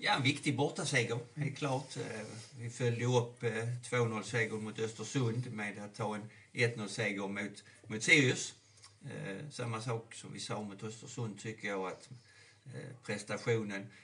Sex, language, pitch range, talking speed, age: male, Swedish, 105-135 Hz, 135 wpm, 50-69